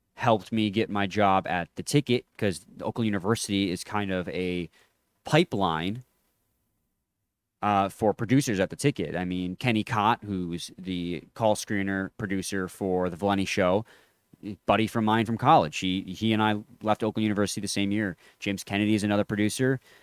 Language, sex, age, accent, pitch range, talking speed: English, male, 20-39, American, 95-110 Hz, 165 wpm